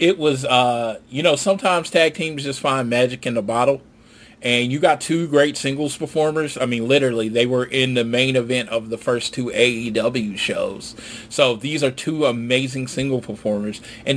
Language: English